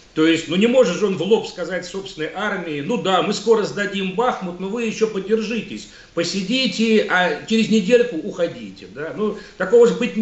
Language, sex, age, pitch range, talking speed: Russian, male, 40-59, 155-195 Hz, 190 wpm